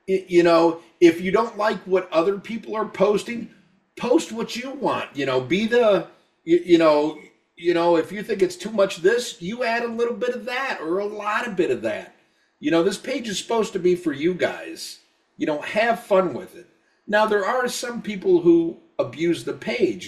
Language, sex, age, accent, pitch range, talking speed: English, male, 50-69, American, 170-255 Hz, 210 wpm